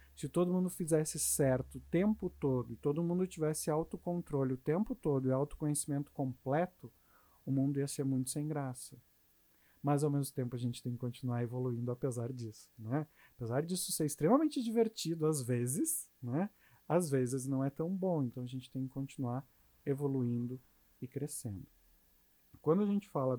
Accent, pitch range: Brazilian, 130-175 Hz